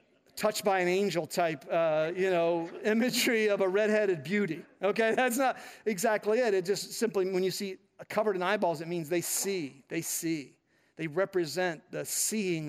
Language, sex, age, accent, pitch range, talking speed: English, male, 50-69, American, 190-255 Hz, 175 wpm